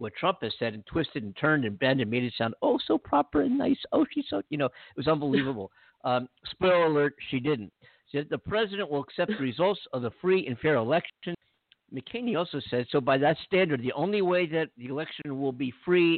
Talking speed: 230 wpm